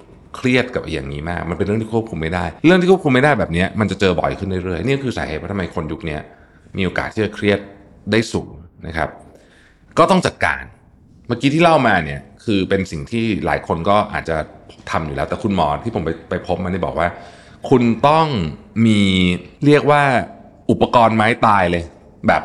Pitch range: 85-110 Hz